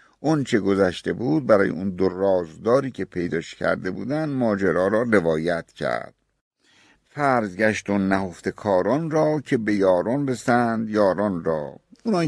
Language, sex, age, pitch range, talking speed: Persian, male, 60-79, 90-135 Hz, 135 wpm